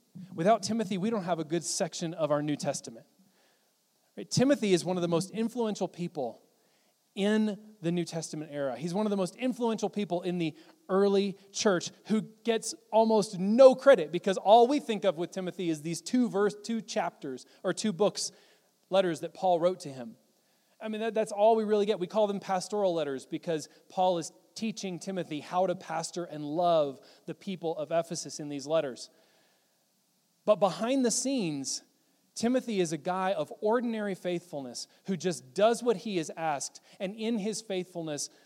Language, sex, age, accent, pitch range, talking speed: English, male, 30-49, American, 165-215 Hz, 180 wpm